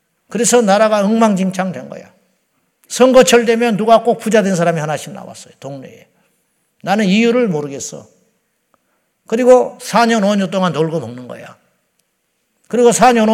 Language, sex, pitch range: Korean, male, 180-230 Hz